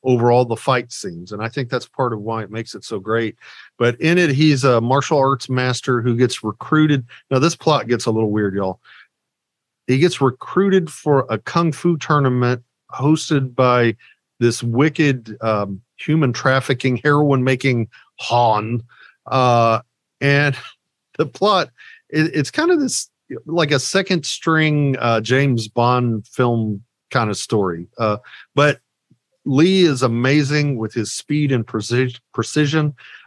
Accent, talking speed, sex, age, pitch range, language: American, 150 wpm, male, 40-59, 115-145 Hz, English